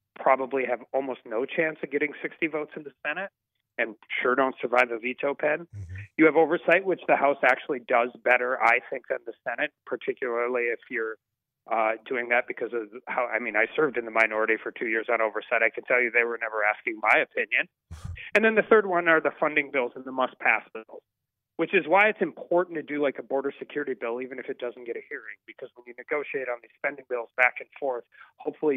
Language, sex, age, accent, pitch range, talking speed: English, male, 30-49, American, 120-155 Hz, 225 wpm